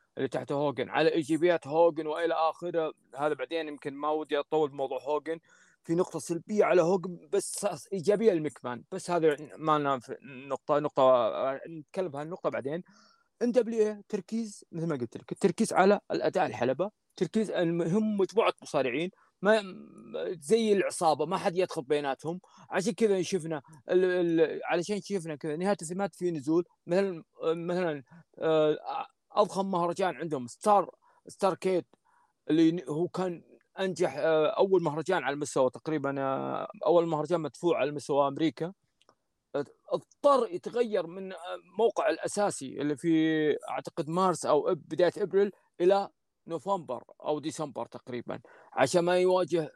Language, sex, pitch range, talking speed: Arabic, male, 155-195 Hz, 135 wpm